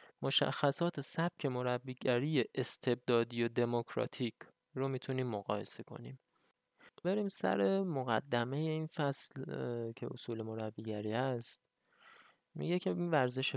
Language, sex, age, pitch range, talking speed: Persian, male, 20-39, 115-145 Hz, 100 wpm